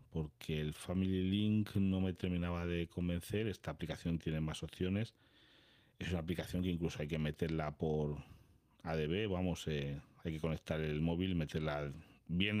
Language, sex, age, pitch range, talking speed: Spanish, male, 40-59, 80-105 Hz, 160 wpm